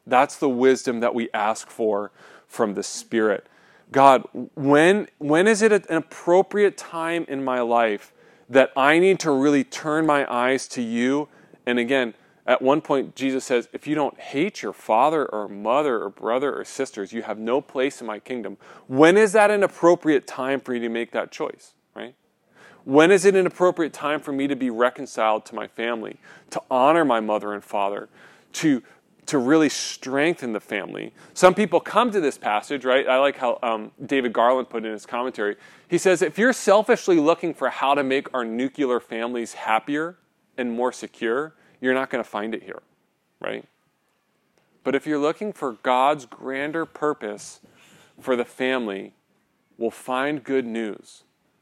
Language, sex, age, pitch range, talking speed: English, male, 30-49, 115-150 Hz, 180 wpm